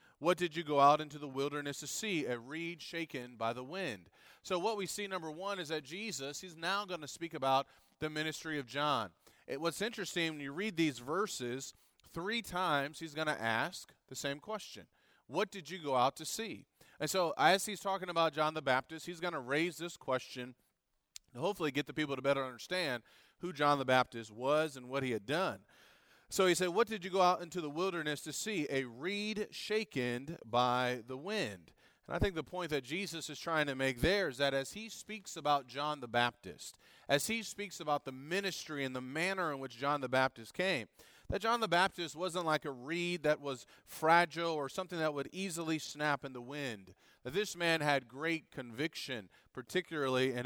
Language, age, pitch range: English, 30-49, 140-180 Hz